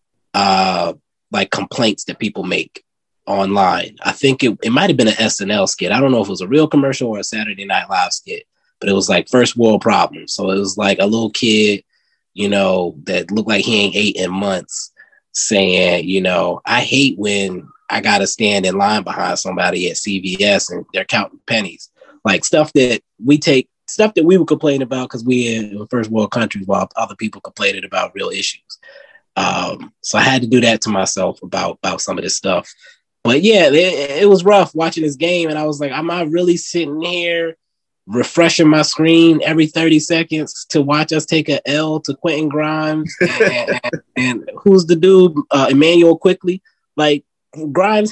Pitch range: 110-165 Hz